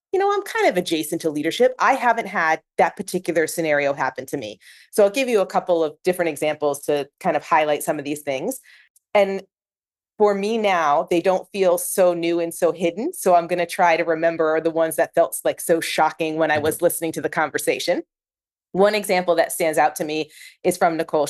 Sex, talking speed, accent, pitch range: female, 215 wpm, American, 155-195 Hz